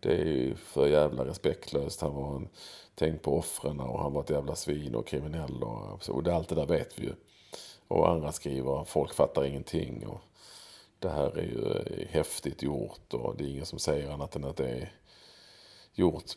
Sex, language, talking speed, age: male, English, 195 wpm, 40-59